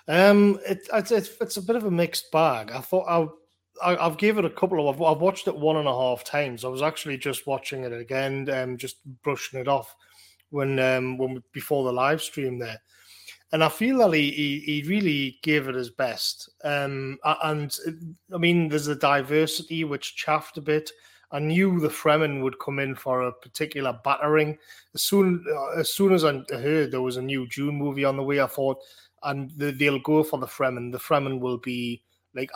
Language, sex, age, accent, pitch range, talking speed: English, male, 30-49, British, 135-175 Hz, 210 wpm